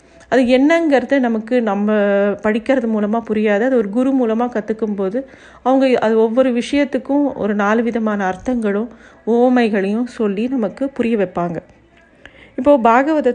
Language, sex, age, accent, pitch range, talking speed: Tamil, female, 50-69, native, 205-250 Hz, 120 wpm